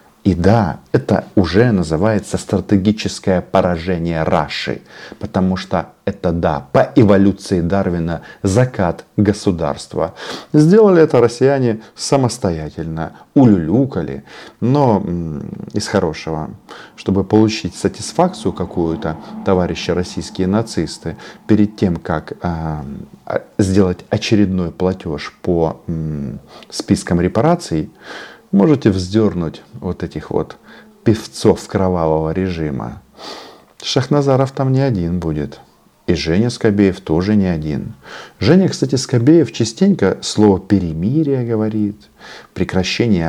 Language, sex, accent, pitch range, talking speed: Russian, male, native, 85-110 Hz, 95 wpm